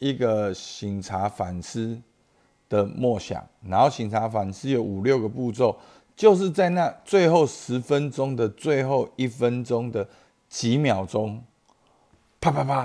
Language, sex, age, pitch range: Chinese, male, 50-69, 95-120 Hz